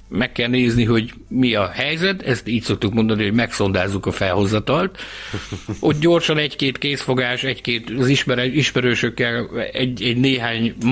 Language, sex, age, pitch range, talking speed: Hungarian, male, 60-79, 100-135 Hz, 135 wpm